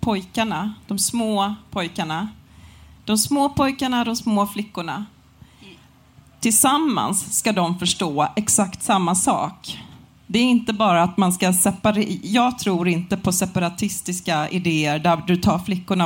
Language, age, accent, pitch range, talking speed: English, 30-49, Swedish, 180-215 Hz, 130 wpm